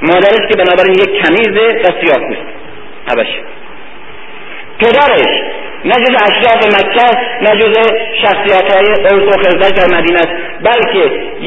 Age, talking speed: 50-69, 115 wpm